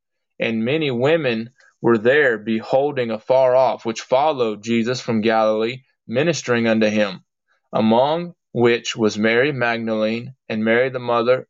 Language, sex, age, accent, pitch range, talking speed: English, male, 20-39, American, 115-135 Hz, 130 wpm